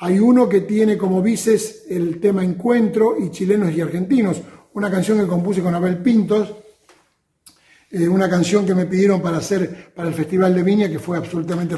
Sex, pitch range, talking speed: male, 165-205 Hz, 185 wpm